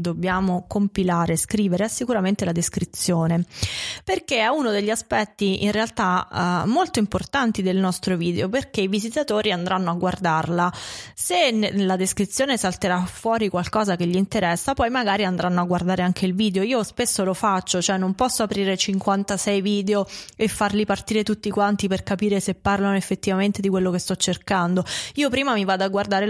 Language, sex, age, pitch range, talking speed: Italian, female, 20-39, 185-230 Hz, 170 wpm